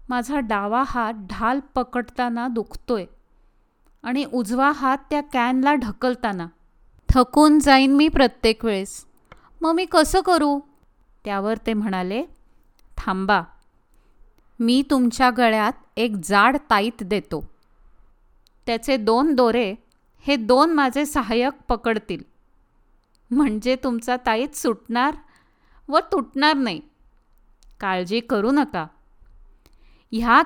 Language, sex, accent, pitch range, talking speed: Marathi, female, native, 225-285 Hz, 100 wpm